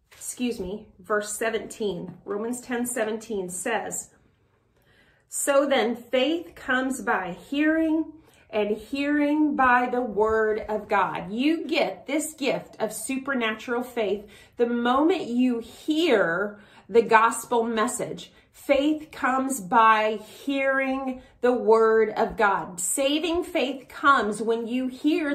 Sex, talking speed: female, 115 wpm